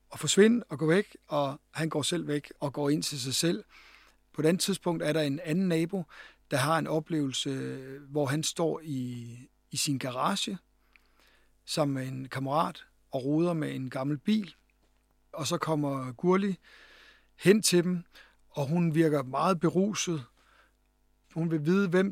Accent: native